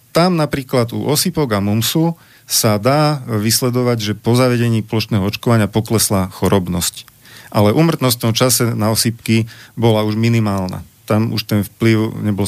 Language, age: Slovak, 40-59